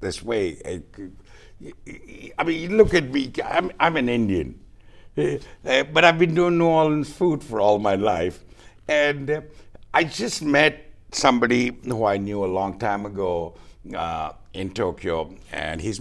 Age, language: 60-79, English